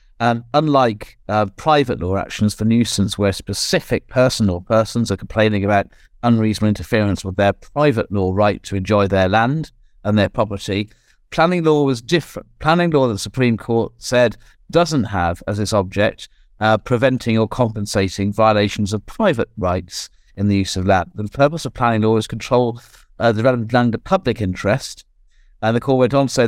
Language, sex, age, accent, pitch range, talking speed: English, male, 50-69, British, 100-120 Hz, 185 wpm